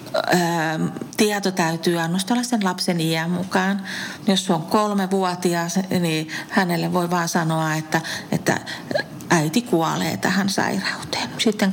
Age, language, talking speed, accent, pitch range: 40-59, Finnish, 120 wpm, native, 165-190 Hz